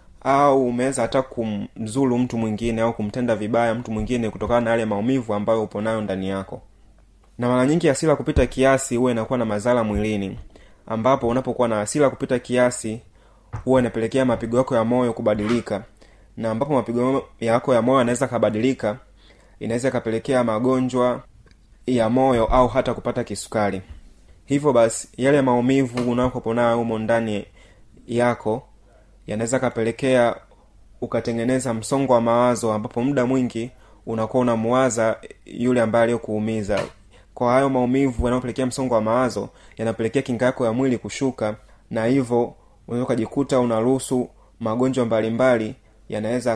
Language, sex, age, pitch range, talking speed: Swahili, male, 20-39, 110-125 Hz, 135 wpm